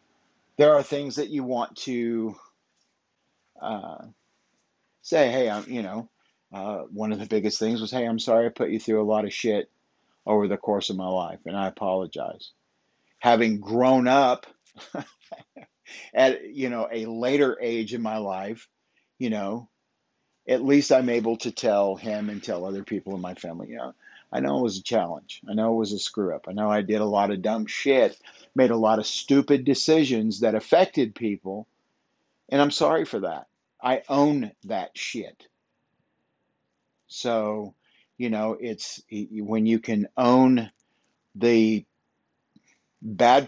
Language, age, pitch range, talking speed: English, 50-69, 105-120 Hz, 165 wpm